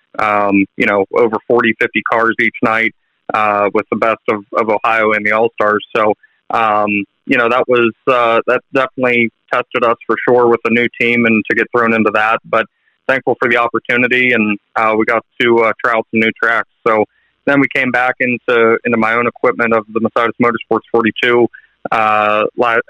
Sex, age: male, 20-39